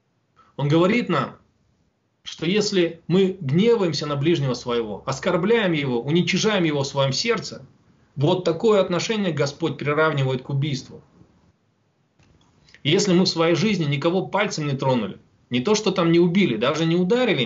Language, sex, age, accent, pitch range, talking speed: Russian, male, 20-39, native, 135-180 Hz, 145 wpm